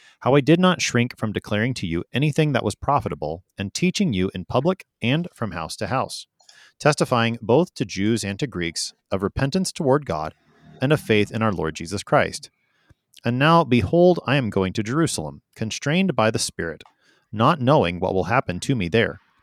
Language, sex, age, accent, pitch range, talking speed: English, male, 30-49, American, 95-130 Hz, 190 wpm